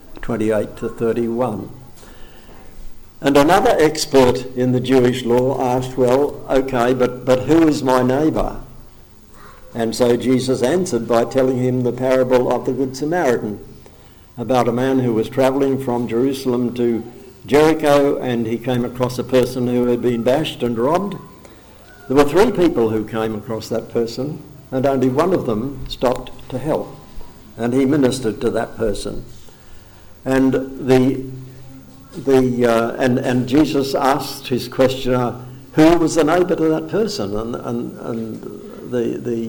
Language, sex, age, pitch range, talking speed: English, male, 60-79, 115-135 Hz, 150 wpm